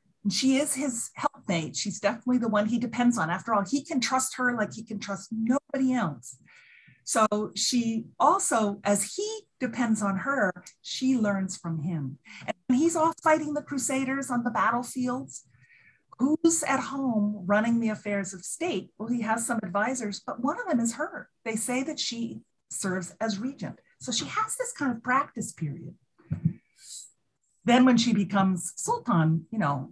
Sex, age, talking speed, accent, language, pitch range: female, 40-59, 170 wpm, American, English, 170-245 Hz